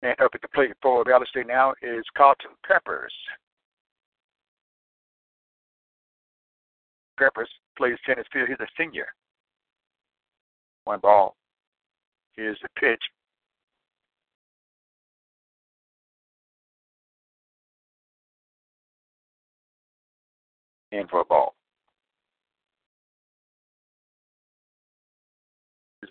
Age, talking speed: 50-69, 65 wpm